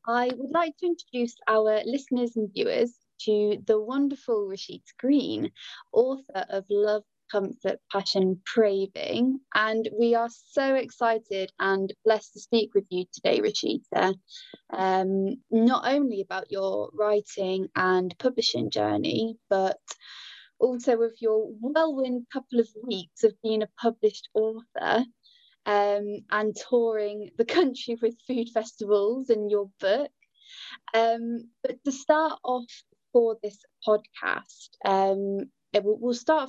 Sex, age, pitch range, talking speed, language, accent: female, 20-39, 200-250 Hz, 130 wpm, English, British